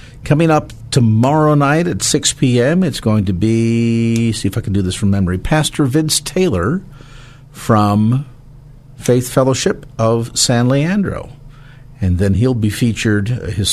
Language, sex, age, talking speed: English, male, 50-69, 150 wpm